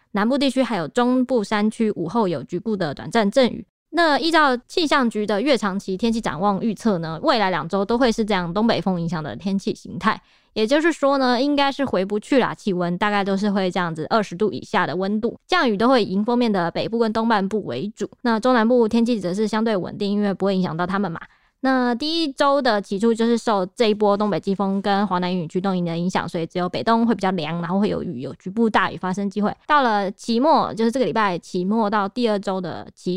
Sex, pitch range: female, 190-240 Hz